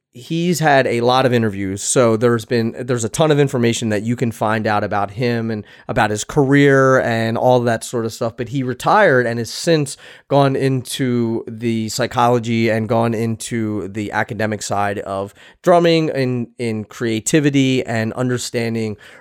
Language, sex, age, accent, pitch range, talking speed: English, male, 30-49, American, 110-130 Hz, 170 wpm